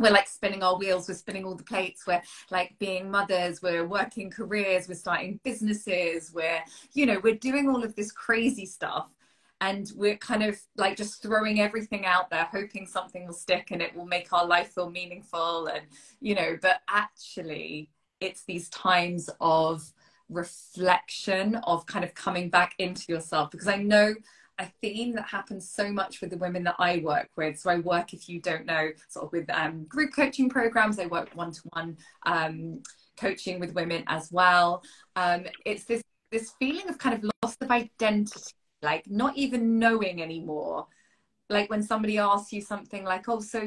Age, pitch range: 20-39, 175-215 Hz